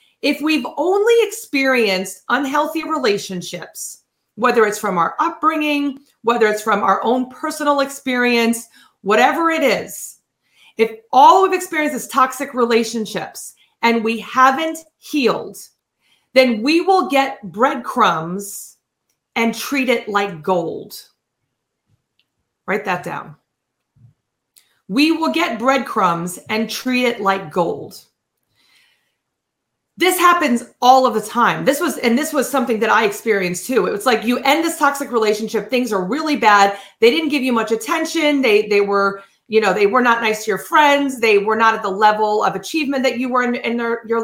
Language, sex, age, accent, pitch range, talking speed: English, female, 30-49, American, 215-280 Hz, 155 wpm